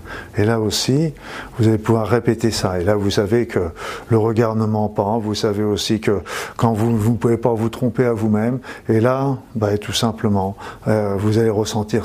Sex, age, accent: male, 50-69, French